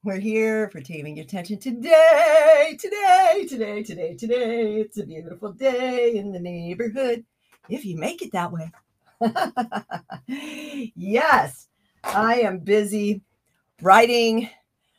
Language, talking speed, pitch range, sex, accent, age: English, 115 wpm, 175-235 Hz, female, American, 50-69